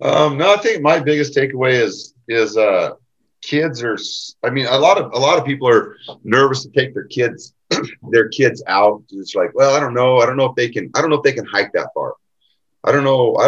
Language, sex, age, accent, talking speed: English, male, 30-49, American, 245 wpm